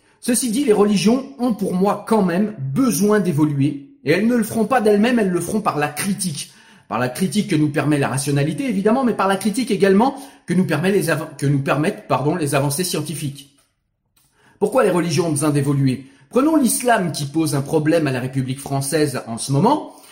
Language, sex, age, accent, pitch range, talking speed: French, male, 40-59, French, 145-240 Hz, 205 wpm